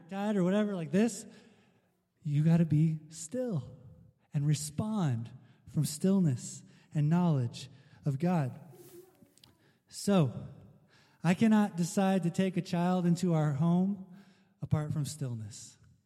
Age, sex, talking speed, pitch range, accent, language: 20-39, male, 115 wpm, 135-180 Hz, American, English